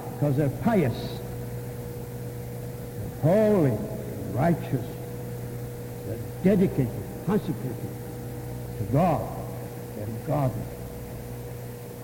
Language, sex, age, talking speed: English, male, 60-79, 60 wpm